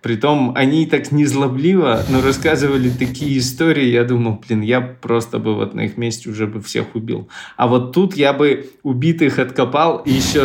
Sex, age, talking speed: male, 20-39, 180 wpm